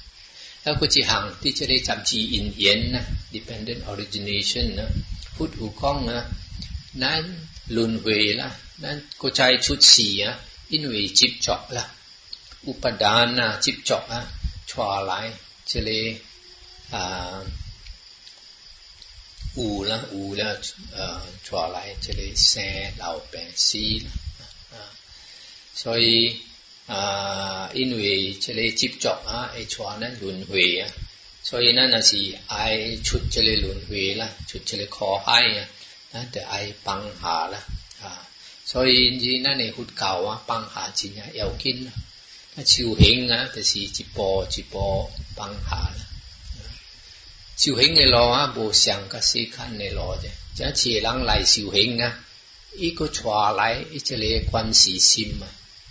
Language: English